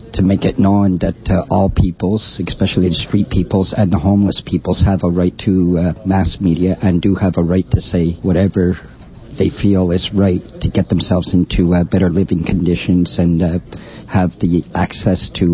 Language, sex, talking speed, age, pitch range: English, male, 190 wpm, 50-69, 90-100 Hz